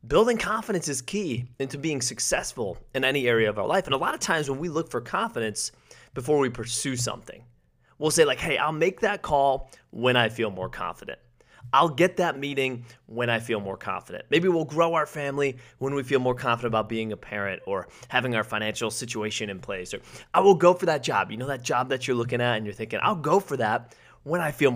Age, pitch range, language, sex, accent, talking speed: 30-49, 115-155 Hz, English, male, American, 230 wpm